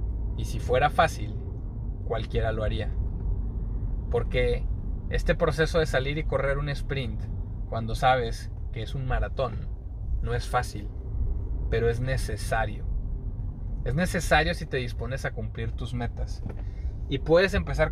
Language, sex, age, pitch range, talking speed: Spanish, male, 20-39, 100-135 Hz, 135 wpm